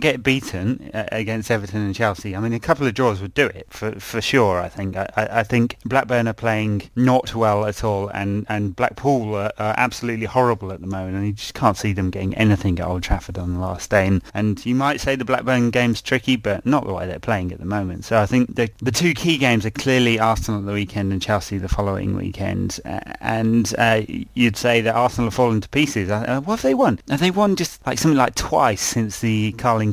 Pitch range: 100-120 Hz